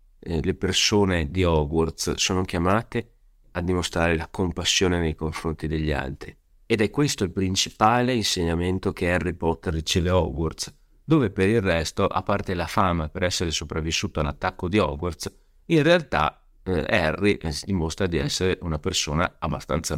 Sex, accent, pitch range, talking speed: male, native, 80-105 Hz, 155 wpm